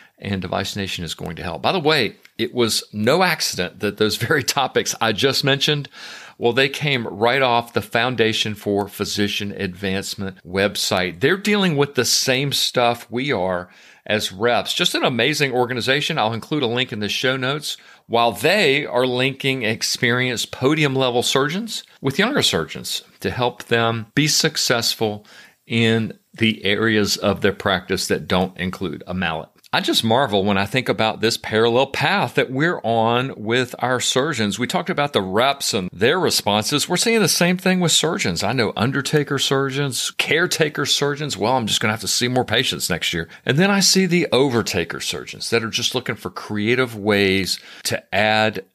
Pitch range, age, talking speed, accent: 105-135 Hz, 50-69, 180 wpm, American